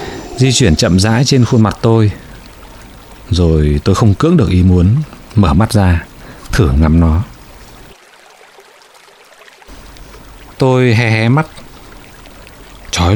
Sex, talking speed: male, 120 wpm